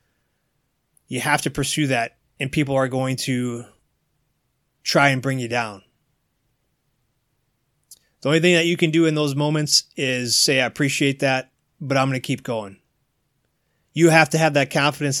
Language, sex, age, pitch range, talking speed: English, male, 30-49, 125-145 Hz, 165 wpm